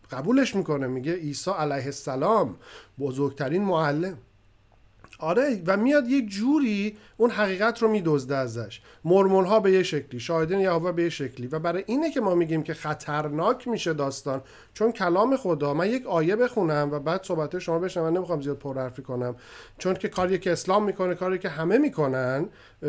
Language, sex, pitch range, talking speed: Persian, male, 150-200 Hz, 170 wpm